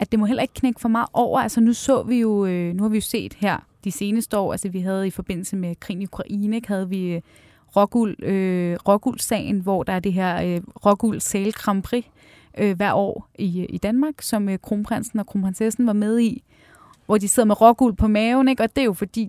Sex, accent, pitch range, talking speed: female, native, 190-225 Hz, 225 wpm